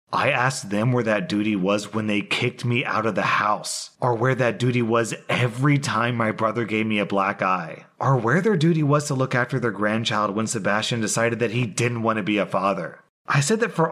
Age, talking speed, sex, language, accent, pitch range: 30-49, 235 wpm, male, English, American, 105-130 Hz